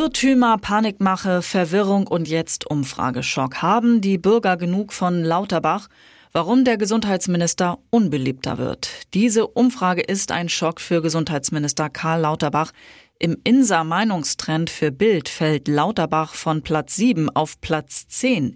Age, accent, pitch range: 30-49, German, 150-195 Hz